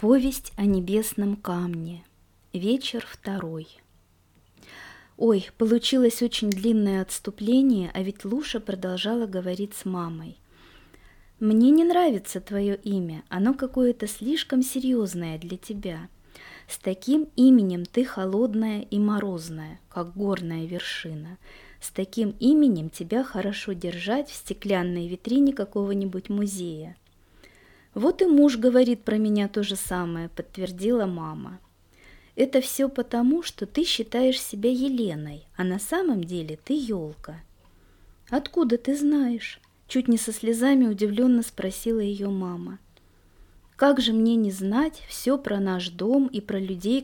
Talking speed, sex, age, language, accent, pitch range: 125 wpm, female, 20-39, Russian, native, 185-245 Hz